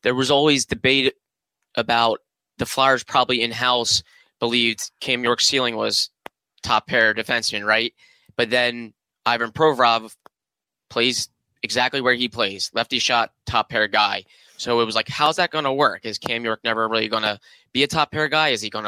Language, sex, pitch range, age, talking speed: English, male, 110-130 Hz, 10-29, 180 wpm